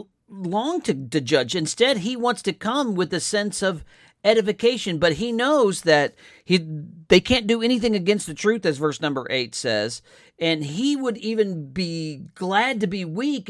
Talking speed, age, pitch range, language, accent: 180 wpm, 50-69, 160-220 Hz, English, American